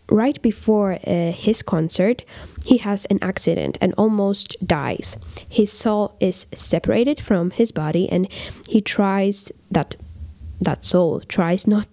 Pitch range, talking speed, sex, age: 180-220 Hz, 135 wpm, female, 10-29